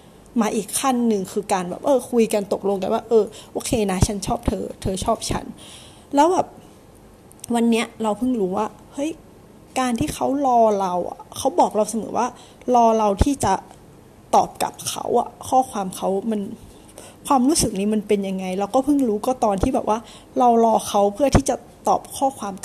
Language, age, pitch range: Thai, 20-39, 215-270 Hz